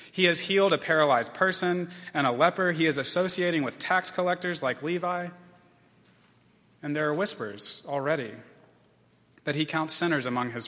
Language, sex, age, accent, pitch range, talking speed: English, male, 30-49, American, 130-175 Hz, 155 wpm